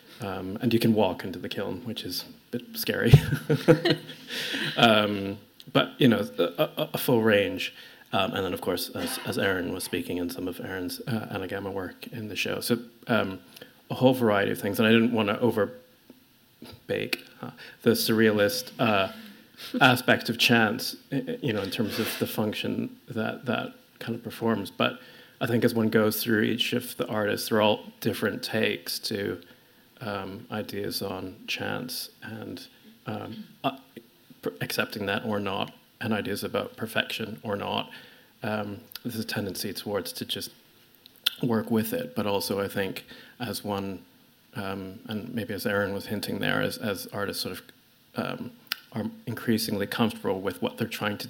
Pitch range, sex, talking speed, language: 100-120 Hz, male, 170 wpm, English